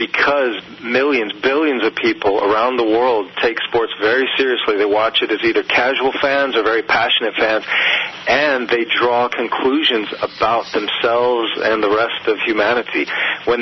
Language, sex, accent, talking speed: English, male, American, 155 wpm